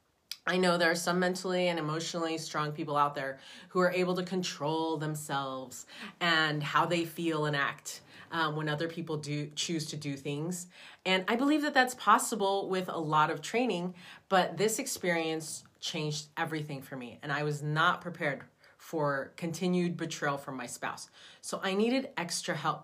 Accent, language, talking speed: American, English, 175 wpm